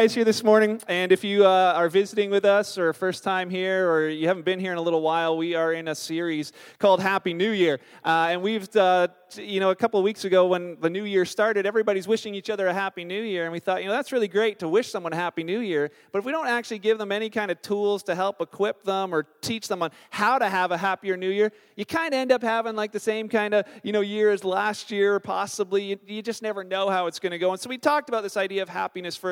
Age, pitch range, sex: 30-49, 180-215 Hz, male